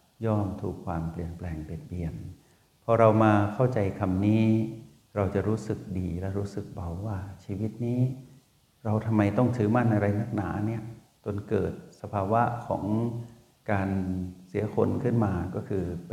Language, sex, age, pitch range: Thai, male, 60-79, 95-110 Hz